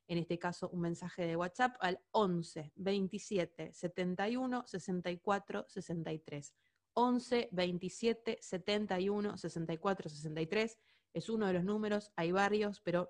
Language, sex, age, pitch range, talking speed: Spanish, female, 20-39, 170-205 Hz, 85 wpm